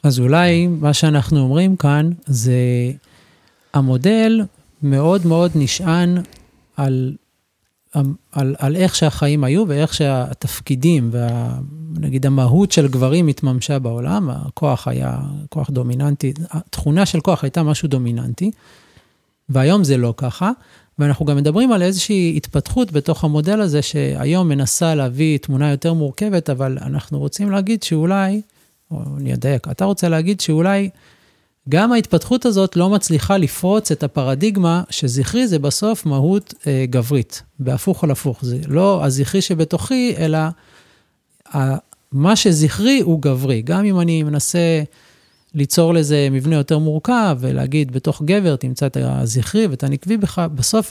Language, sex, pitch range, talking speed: Hebrew, male, 135-175 Hz, 130 wpm